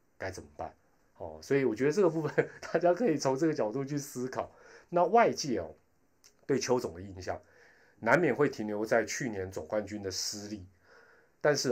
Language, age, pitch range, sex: Chinese, 20-39, 110-145 Hz, male